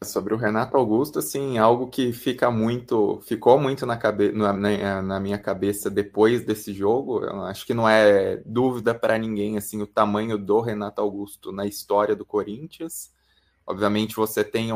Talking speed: 165 wpm